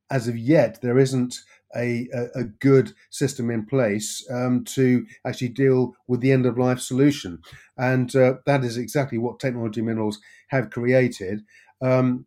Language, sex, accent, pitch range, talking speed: English, male, British, 115-130 Hz, 155 wpm